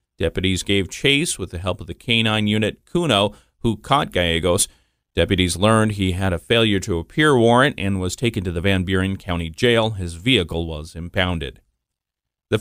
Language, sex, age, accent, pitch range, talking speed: English, male, 40-59, American, 95-130 Hz, 175 wpm